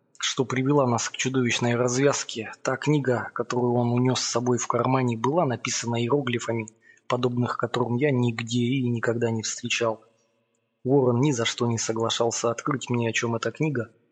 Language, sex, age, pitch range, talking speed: Russian, male, 20-39, 115-125 Hz, 160 wpm